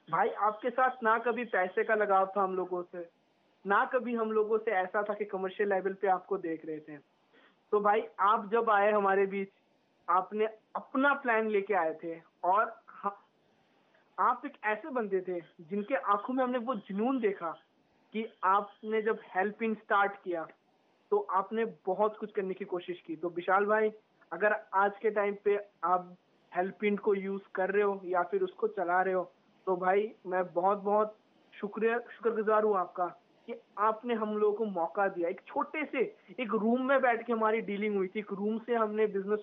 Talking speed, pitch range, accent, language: 180 wpm, 185-220 Hz, native, Hindi